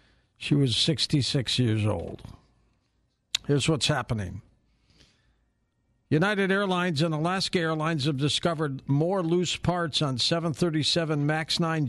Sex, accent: male, American